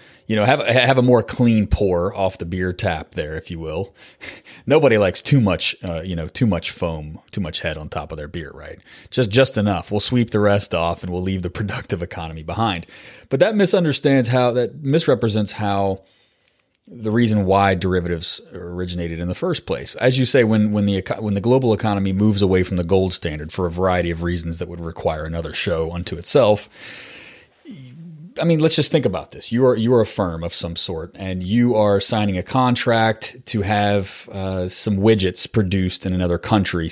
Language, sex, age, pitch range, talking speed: English, male, 30-49, 85-115 Hz, 205 wpm